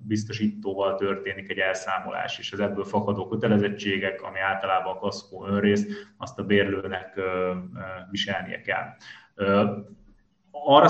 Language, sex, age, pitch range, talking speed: Hungarian, male, 20-39, 100-110 Hz, 125 wpm